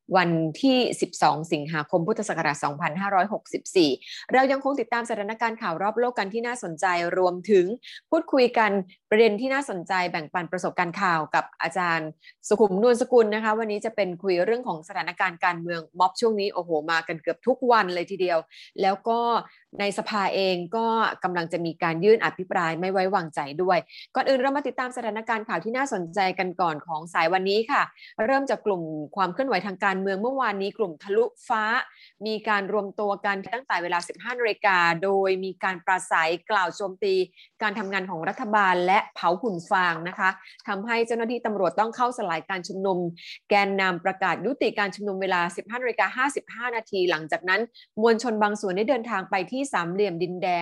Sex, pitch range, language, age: female, 180-230 Hz, Thai, 20-39